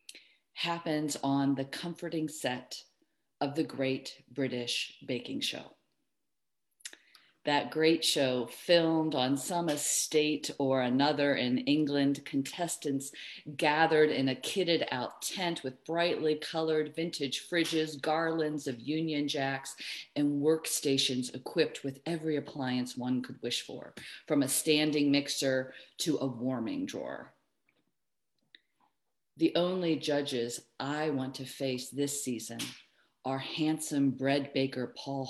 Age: 40-59